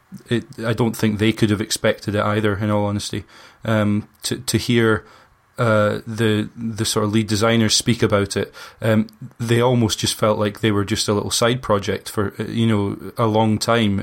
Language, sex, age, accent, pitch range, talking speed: English, male, 20-39, British, 105-115 Hz, 195 wpm